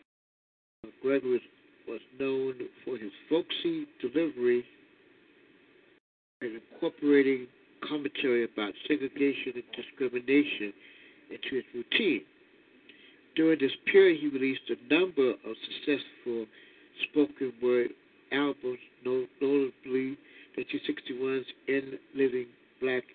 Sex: male